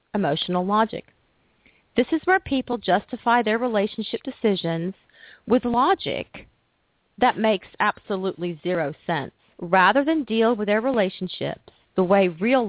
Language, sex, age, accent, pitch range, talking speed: English, female, 40-59, American, 185-250 Hz, 125 wpm